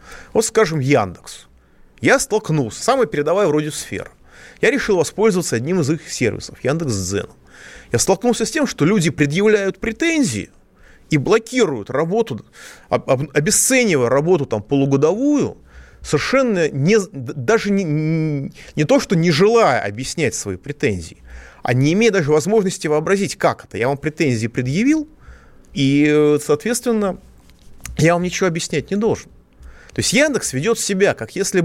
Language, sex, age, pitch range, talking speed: Russian, male, 30-49, 135-215 Hz, 130 wpm